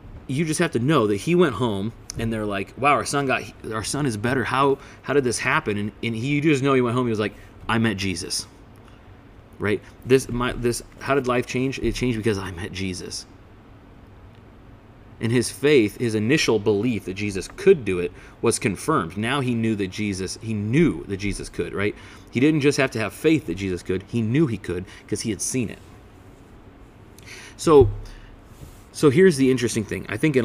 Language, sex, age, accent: English, male, 30-49, American